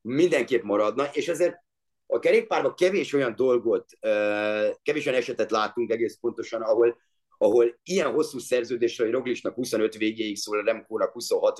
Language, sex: Hungarian, male